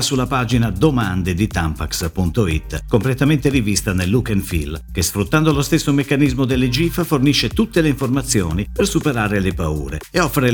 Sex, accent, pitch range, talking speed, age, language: male, native, 90-145 Hz, 160 wpm, 50-69, Italian